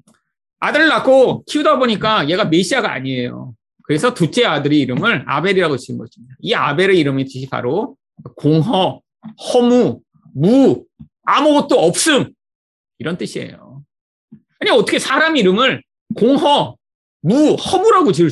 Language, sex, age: Korean, male, 30-49